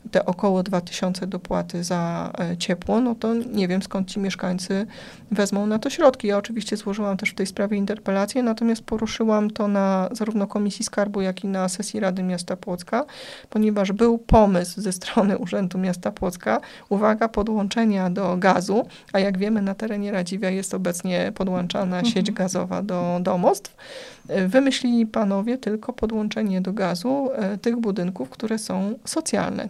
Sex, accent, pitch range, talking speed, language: female, native, 190-220 Hz, 155 wpm, Polish